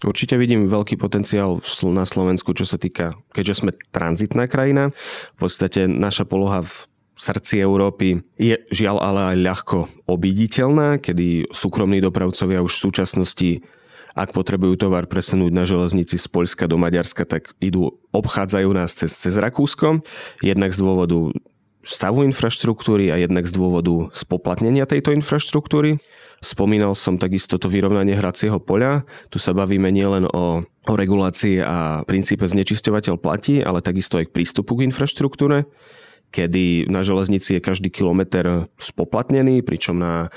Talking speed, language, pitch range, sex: 140 wpm, Slovak, 90-105 Hz, male